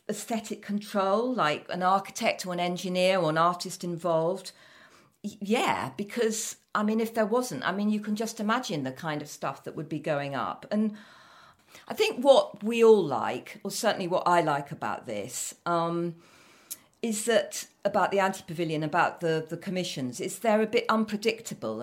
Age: 50-69